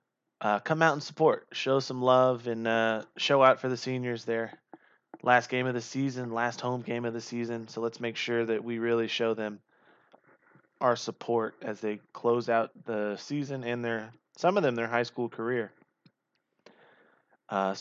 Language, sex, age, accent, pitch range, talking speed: English, male, 20-39, American, 115-130 Hz, 180 wpm